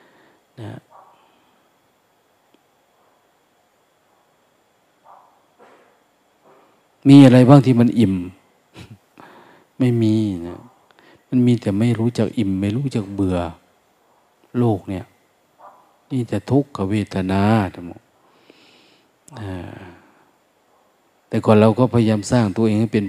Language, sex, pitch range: Thai, male, 100-125 Hz